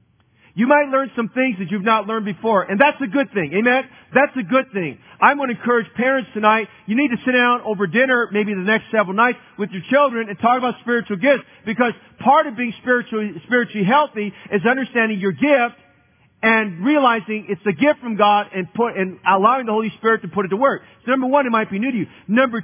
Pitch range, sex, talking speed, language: 200-255 Hz, male, 230 wpm, English